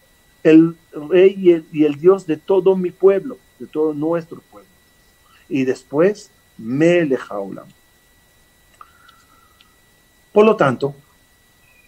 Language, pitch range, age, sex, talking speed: Spanish, 140-200 Hz, 40-59, male, 105 wpm